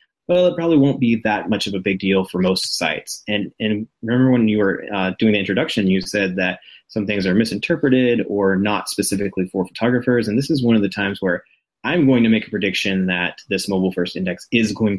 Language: English